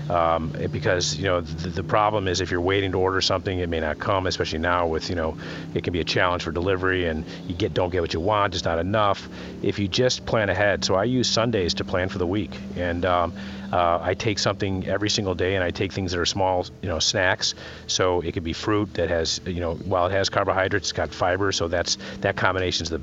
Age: 40-59